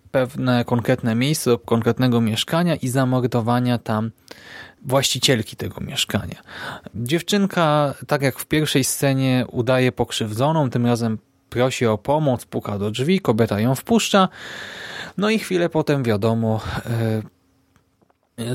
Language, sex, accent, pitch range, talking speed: Polish, male, native, 120-150 Hz, 120 wpm